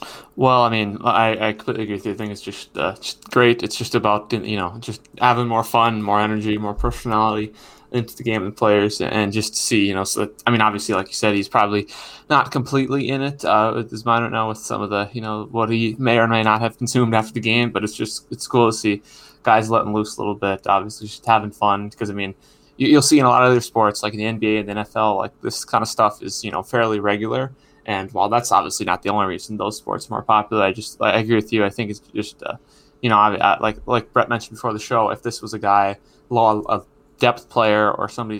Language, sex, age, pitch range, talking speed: English, male, 20-39, 105-115 Hz, 265 wpm